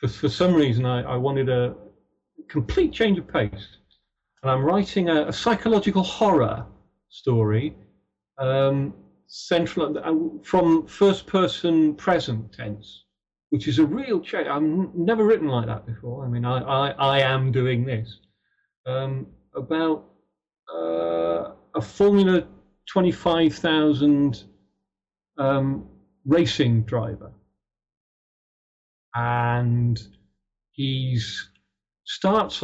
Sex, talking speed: male, 105 wpm